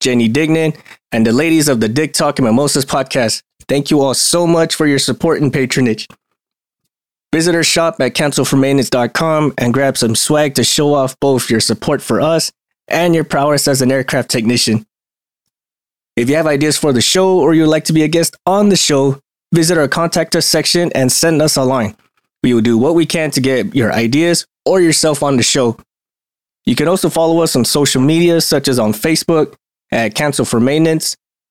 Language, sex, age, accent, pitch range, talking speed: English, male, 20-39, American, 130-165 Hz, 200 wpm